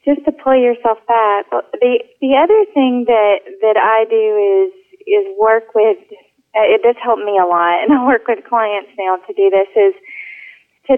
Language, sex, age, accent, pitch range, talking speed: English, female, 30-49, American, 180-220 Hz, 185 wpm